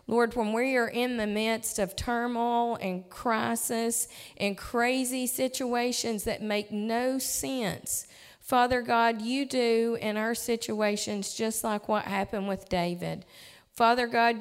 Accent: American